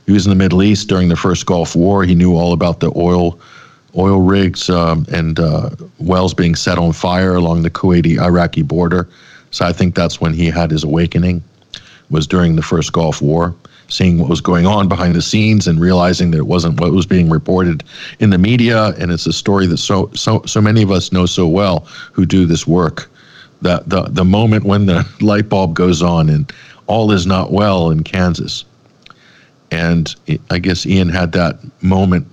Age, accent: 50-69, American